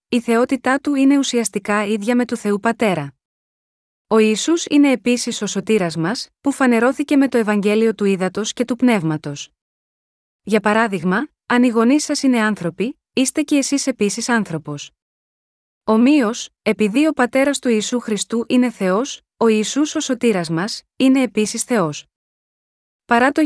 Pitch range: 205-255 Hz